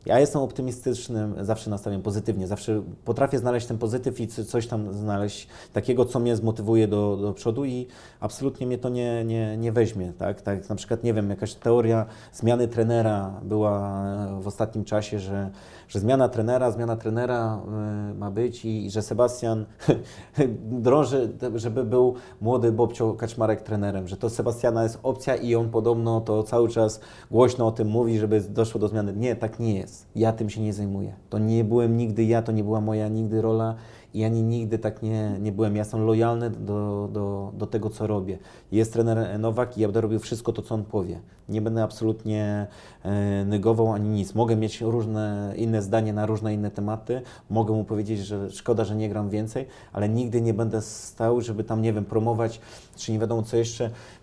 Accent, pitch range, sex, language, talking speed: native, 105-115 Hz, male, Polish, 190 wpm